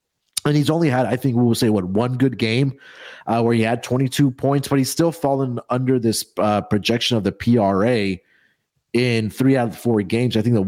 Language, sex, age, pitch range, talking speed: English, male, 30-49, 100-120 Hz, 225 wpm